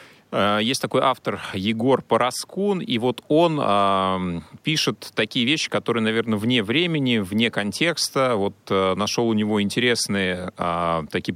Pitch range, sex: 95-120 Hz, male